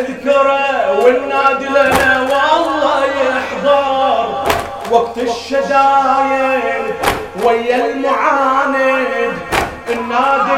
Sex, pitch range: male, 210-265 Hz